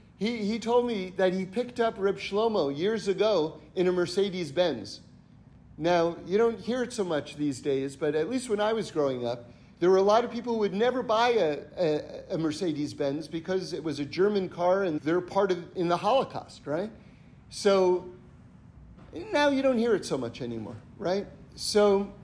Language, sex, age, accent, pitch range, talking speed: English, male, 50-69, American, 155-220 Hz, 190 wpm